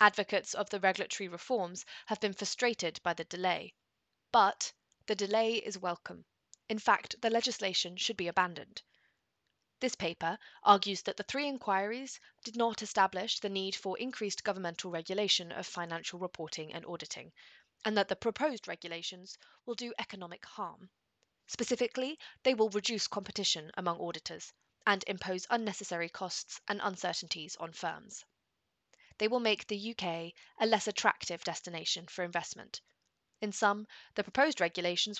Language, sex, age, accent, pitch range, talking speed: English, female, 20-39, British, 180-225 Hz, 145 wpm